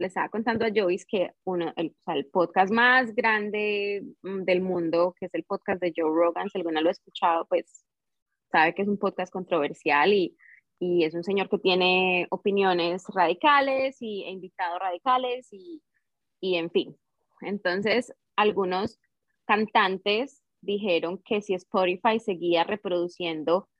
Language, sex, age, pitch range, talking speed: English, female, 20-39, 175-215 Hz, 155 wpm